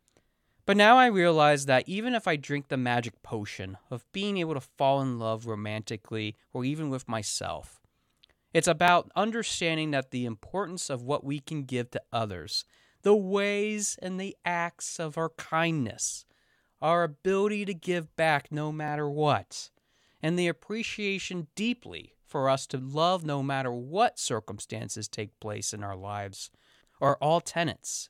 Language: English